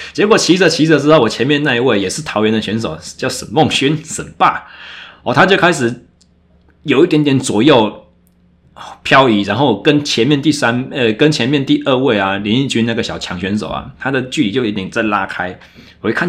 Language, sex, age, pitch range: Chinese, male, 20-39, 105-155 Hz